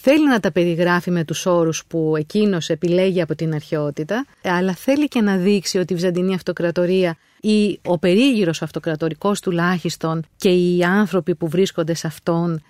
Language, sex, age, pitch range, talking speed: Greek, female, 30-49, 165-200 Hz, 160 wpm